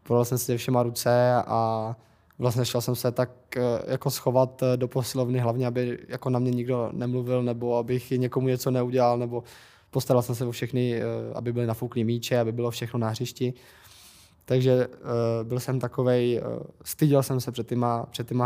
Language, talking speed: Czech, 175 wpm